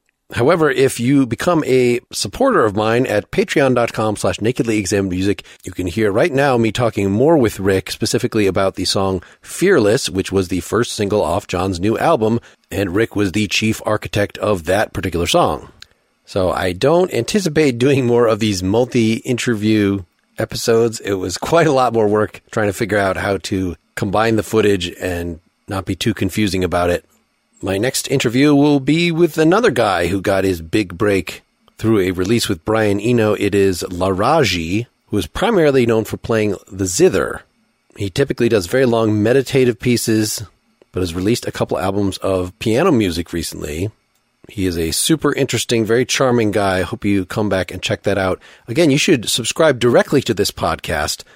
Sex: male